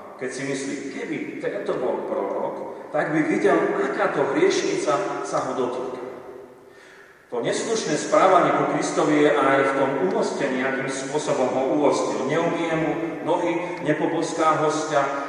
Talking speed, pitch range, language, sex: 135 wpm, 135-170 Hz, Slovak, male